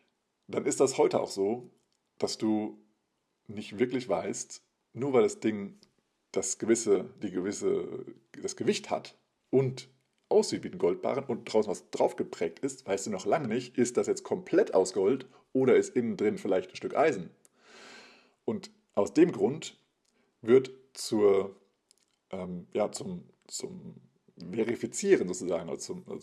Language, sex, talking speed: German, male, 155 wpm